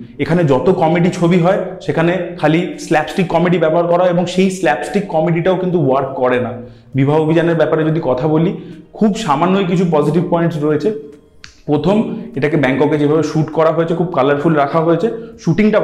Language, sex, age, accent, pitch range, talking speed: Bengali, male, 30-49, native, 150-180 Hz, 165 wpm